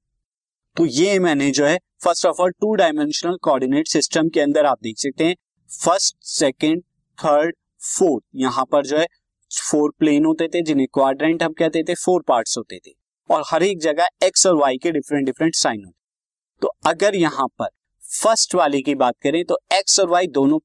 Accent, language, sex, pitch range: native, Hindi, male, 125-180 Hz